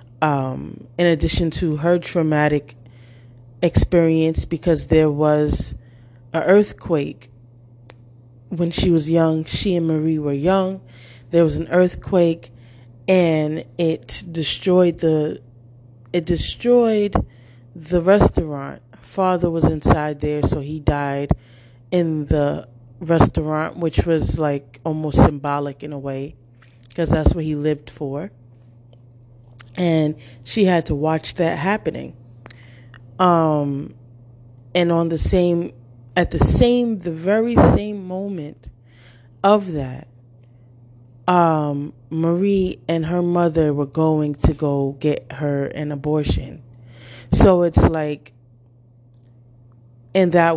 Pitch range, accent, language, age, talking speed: 120-165 Hz, American, English, 20-39, 115 wpm